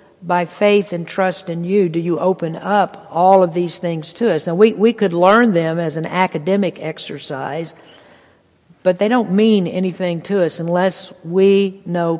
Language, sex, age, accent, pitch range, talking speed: English, female, 50-69, American, 165-200 Hz, 175 wpm